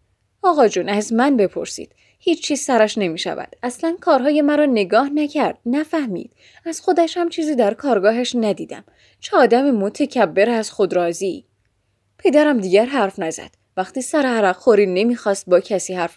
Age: 10-29